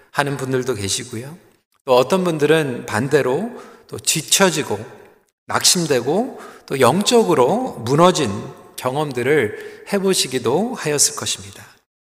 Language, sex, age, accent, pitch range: Korean, male, 40-59, native, 140-200 Hz